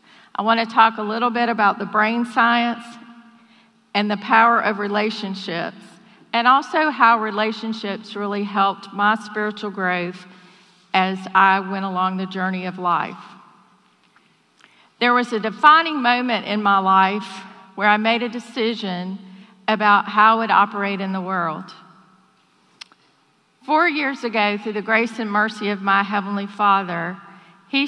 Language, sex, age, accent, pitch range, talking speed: English, female, 50-69, American, 200-230 Hz, 140 wpm